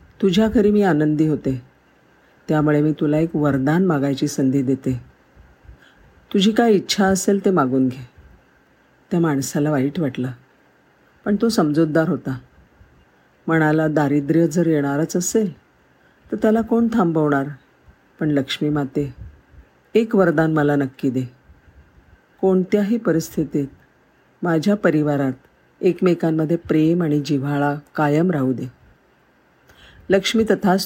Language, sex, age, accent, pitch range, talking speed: Marathi, female, 50-69, native, 140-185 Hz, 90 wpm